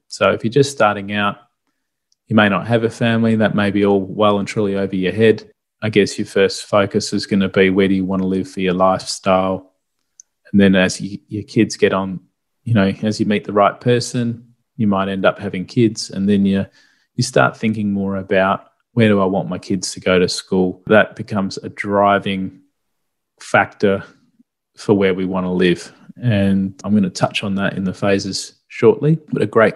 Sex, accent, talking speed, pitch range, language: male, Australian, 210 wpm, 95-115 Hz, English